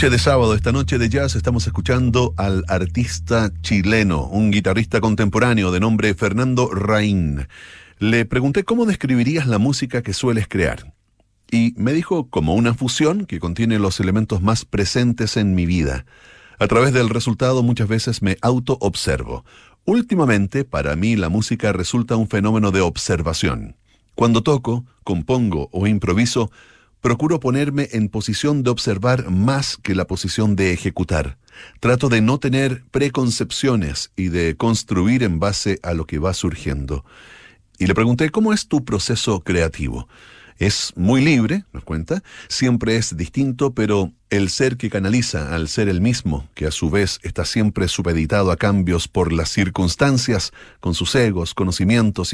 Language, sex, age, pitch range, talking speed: Spanish, male, 40-59, 95-125 Hz, 155 wpm